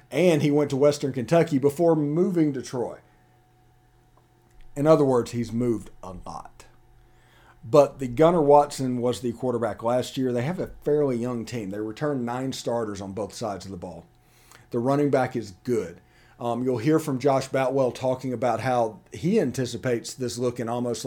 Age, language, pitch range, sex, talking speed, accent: 40-59, English, 120-145 Hz, male, 175 wpm, American